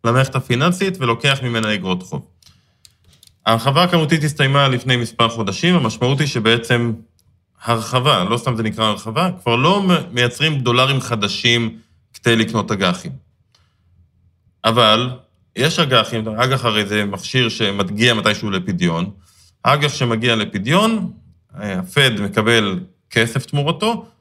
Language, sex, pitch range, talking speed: Hebrew, male, 110-155 Hz, 115 wpm